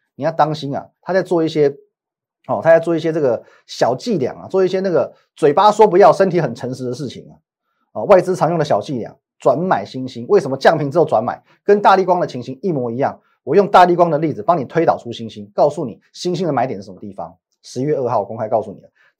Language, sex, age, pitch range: Chinese, male, 30-49, 135-180 Hz